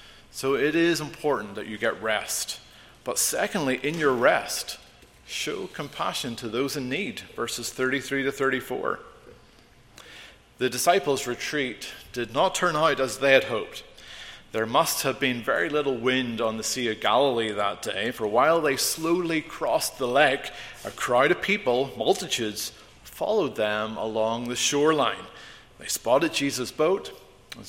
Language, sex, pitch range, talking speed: English, male, 110-140 Hz, 150 wpm